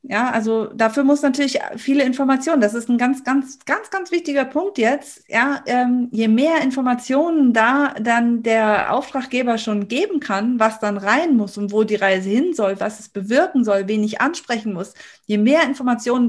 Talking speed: 185 wpm